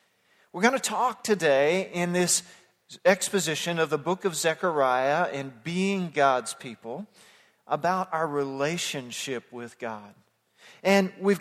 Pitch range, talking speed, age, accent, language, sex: 150-205 Hz, 125 wpm, 40-59, American, English, male